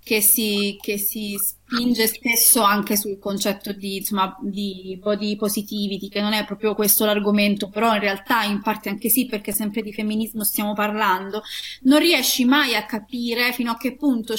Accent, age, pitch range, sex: native, 20-39, 210-265 Hz, female